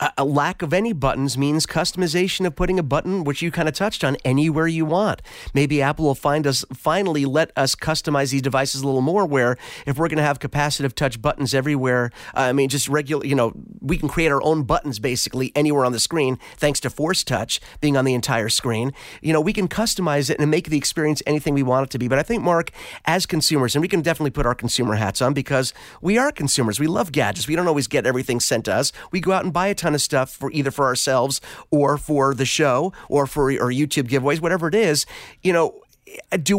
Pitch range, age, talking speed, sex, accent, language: 140-185 Hz, 30-49, 235 wpm, male, American, English